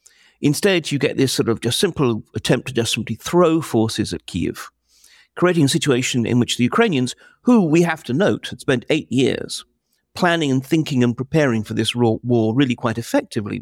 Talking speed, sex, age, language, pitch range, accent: 190 wpm, male, 50-69, English, 110-145 Hz, British